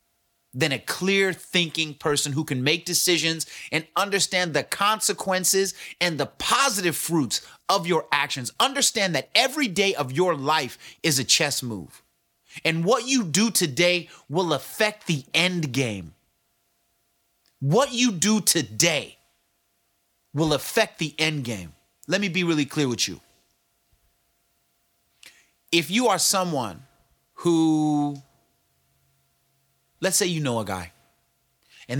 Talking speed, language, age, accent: 130 wpm, English, 30-49, American